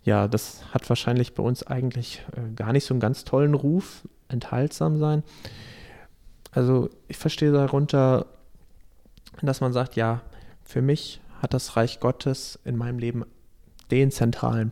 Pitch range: 120-145 Hz